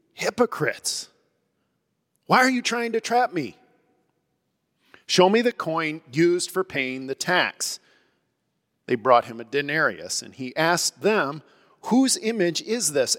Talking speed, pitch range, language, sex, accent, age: 135 wpm, 135-190 Hz, English, male, American, 40-59